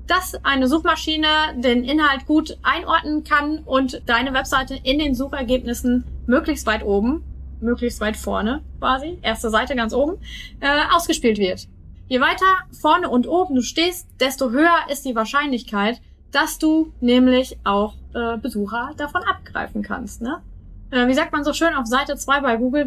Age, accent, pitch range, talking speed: 20-39, German, 235-300 Hz, 155 wpm